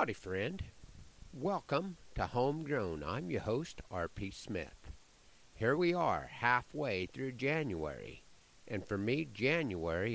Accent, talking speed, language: American, 120 wpm, English